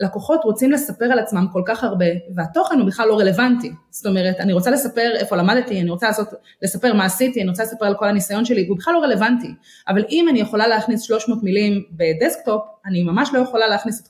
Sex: female